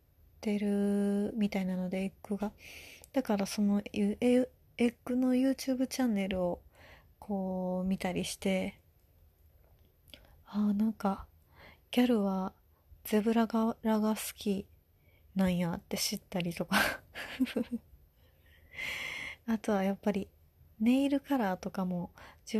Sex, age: female, 30-49